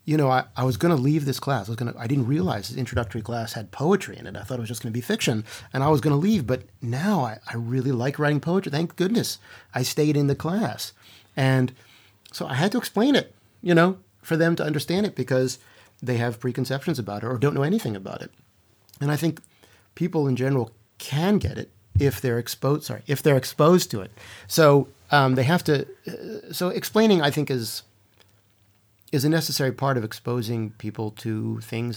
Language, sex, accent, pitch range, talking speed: English, male, American, 110-145 Hz, 220 wpm